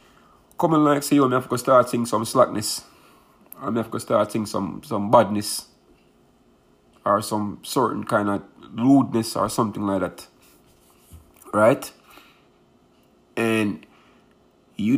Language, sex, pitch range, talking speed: English, male, 75-115 Hz, 130 wpm